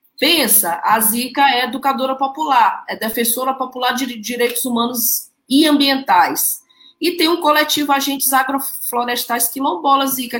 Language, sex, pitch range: Portuguese, female, 205-265 Hz